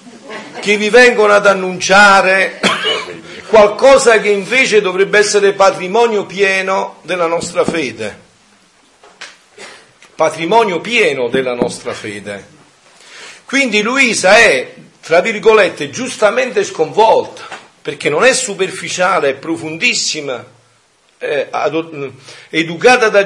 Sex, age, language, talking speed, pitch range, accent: male, 50-69, Italian, 90 wpm, 145-230 Hz, native